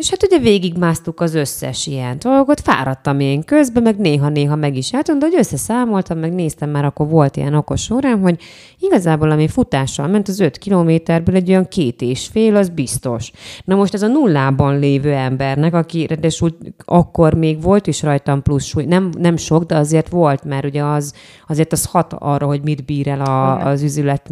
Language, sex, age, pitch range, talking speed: English, female, 20-39, 140-185 Hz, 195 wpm